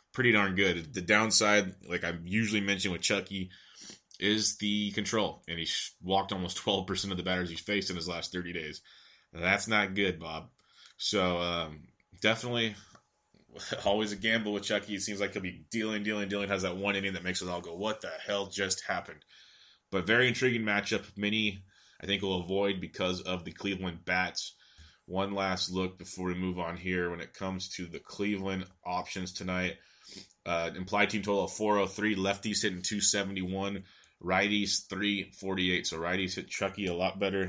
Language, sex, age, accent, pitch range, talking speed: English, male, 20-39, American, 90-105 Hz, 185 wpm